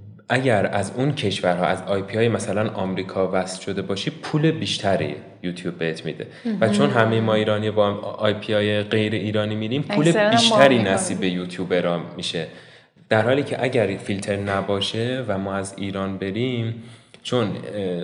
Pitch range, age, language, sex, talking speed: 95-135 Hz, 20-39, Persian, male, 160 wpm